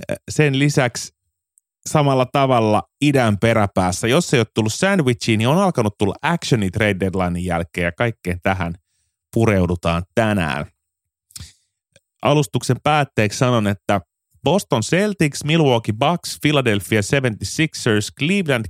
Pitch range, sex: 90-120 Hz, male